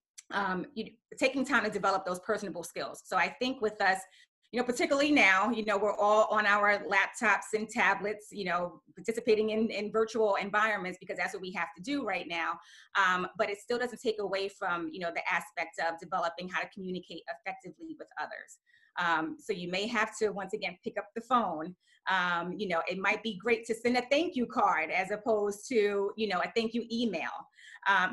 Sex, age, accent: female, 30-49, American